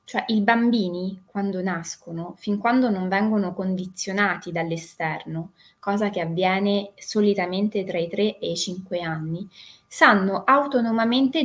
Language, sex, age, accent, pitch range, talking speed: Italian, female, 20-39, native, 185-235 Hz, 125 wpm